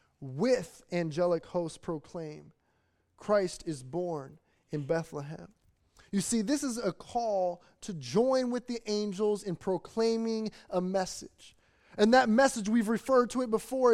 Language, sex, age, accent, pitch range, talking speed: English, male, 20-39, American, 180-230 Hz, 140 wpm